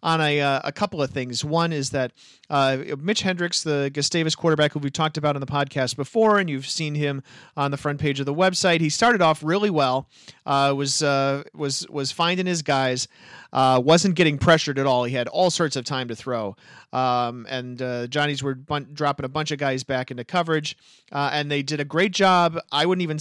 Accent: American